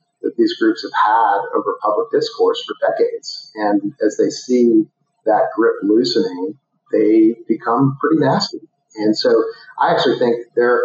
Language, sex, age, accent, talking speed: English, male, 40-59, American, 150 wpm